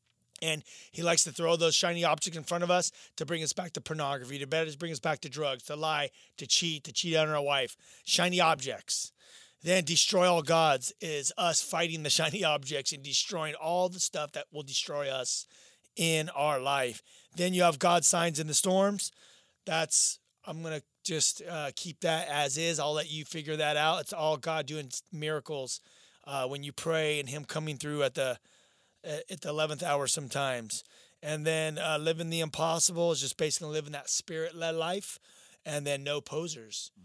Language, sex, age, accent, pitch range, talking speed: English, male, 30-49, American, 140-165 Hz, 190 wpm